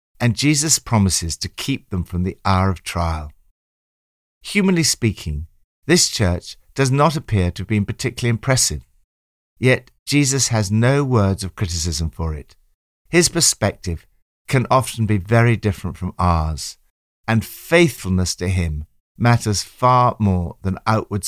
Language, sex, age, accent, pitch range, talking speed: English, male, 60-79, British, 85-125 Hz, 140 wpm